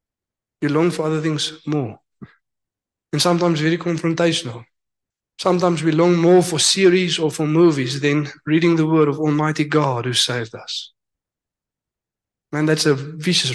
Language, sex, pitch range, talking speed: English, male, 130-165 Hz, 145 wpm